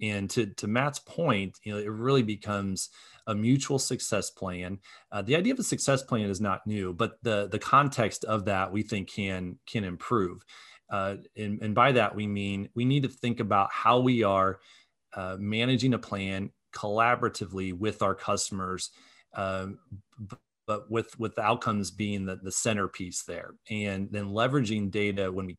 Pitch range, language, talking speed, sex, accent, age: 95-110 Hz, English, 175 wpm, male, American, 30-49